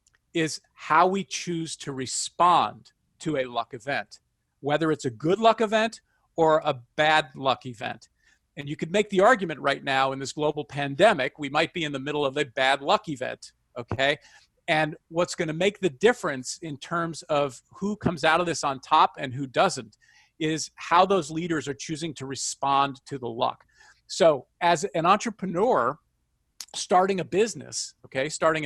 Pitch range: 140-195 Hz